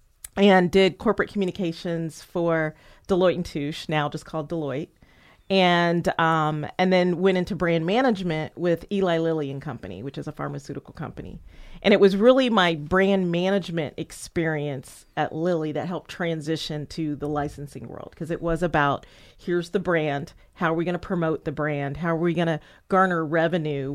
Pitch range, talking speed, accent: 155-190 Hz, 175 wpm, American